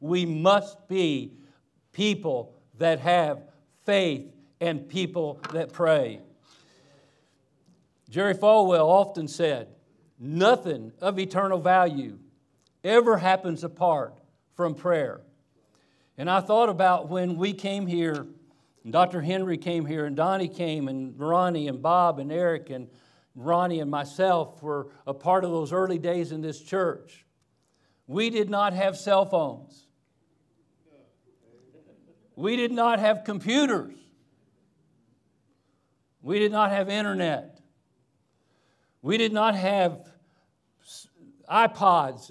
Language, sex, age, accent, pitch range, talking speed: English, male, 50-69, American, 160-205 Hz, 115 wpm